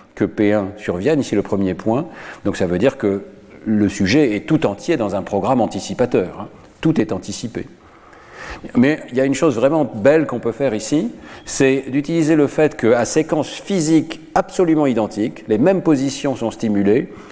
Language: French